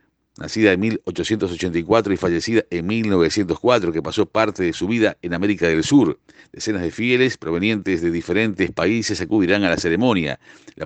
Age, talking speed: 50-69, 160 wpm